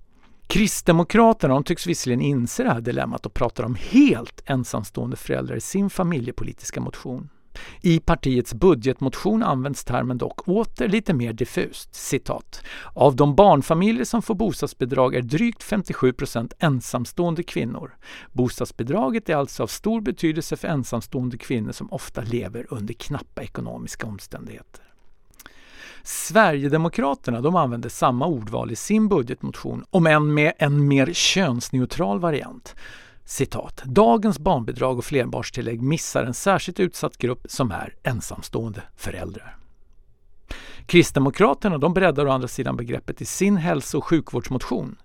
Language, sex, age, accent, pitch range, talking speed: English, male, 50-69, Swedish, 125-180 Hz, 125 wpm